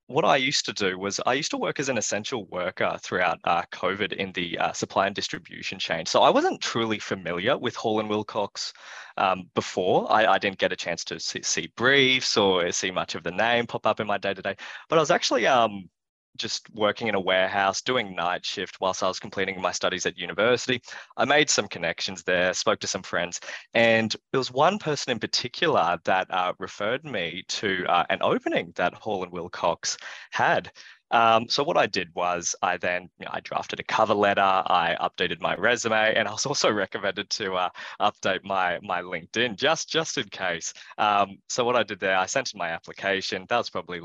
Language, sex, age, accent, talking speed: English, male, 20-39, Australian, 210 wpm